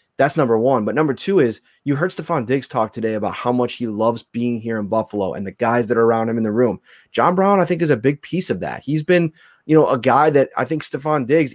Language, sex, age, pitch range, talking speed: English, male, 20-39, 115-150 Hz, 275 wpm